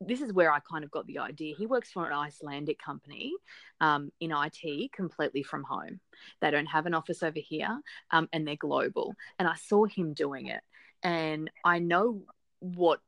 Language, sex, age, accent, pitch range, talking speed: English, female, 20-39, Australian, 155-195 Hz, 195 wpm